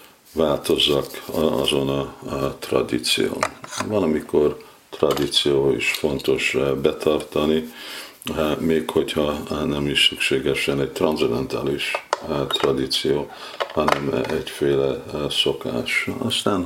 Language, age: Hungarian, 50-69